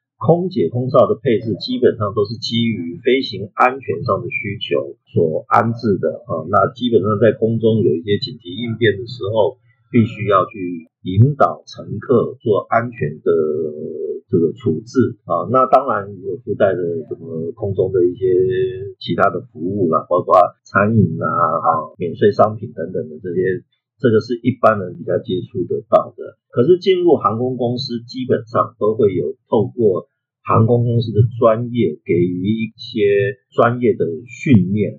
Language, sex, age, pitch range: Chinese, male, 50-69, 110-185 Hz